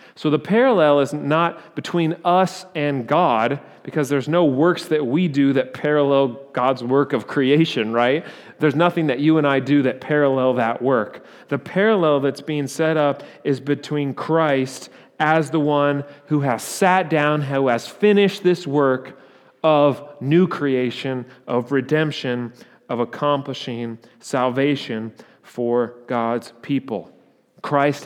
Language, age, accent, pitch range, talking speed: English, 40-59, American, 125-155 Hz, 145 wpm